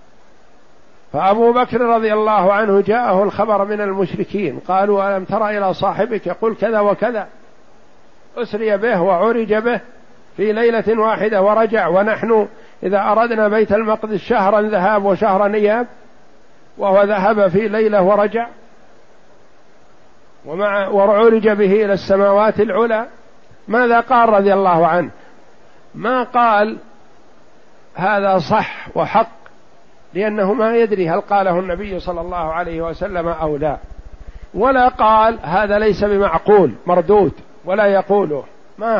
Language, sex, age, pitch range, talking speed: Arabic, male, 50-69, 180-220 Hz, 115 wpm